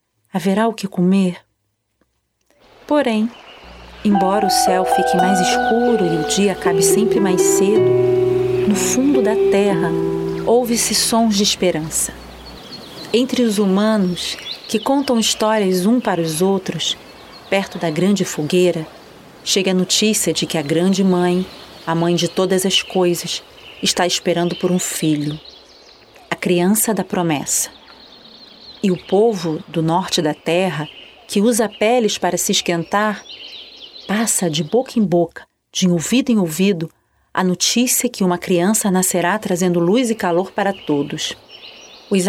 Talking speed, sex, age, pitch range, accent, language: 140 wpm, female, 40-59, 175-220 Hz, Brazilian, Portuguese